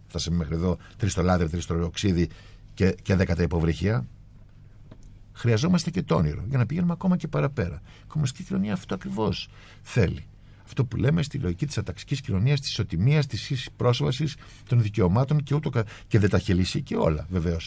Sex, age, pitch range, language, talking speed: male, 60-79, 95-125 Hz, Greek, 175 wpm